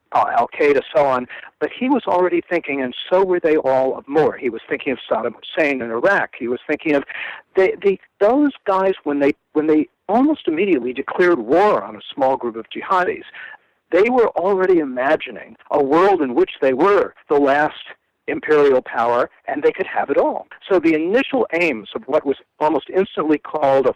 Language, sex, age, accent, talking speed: English, male, 60-79, American, 195 wpm